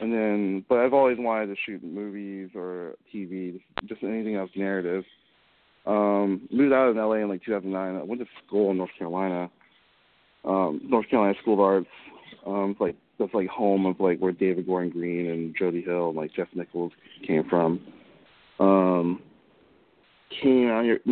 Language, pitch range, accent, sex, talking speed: English, 90-105 Hz, American, male, 180 wpm